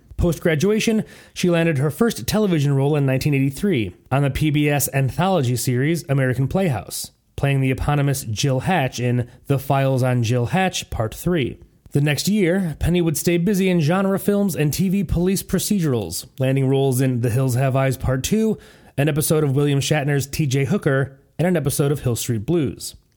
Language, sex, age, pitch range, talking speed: English, male, 30-49, 130-170 Hz, 170 wpm